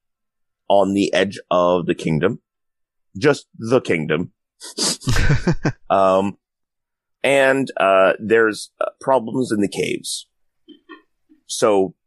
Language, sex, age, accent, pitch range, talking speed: English, male, 30-49, American, 90-155 Hz, 95 wpm